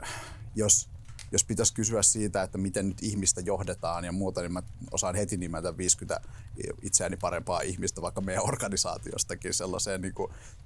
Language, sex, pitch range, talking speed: Finnish, male, 90-105 Hz, 145 wpm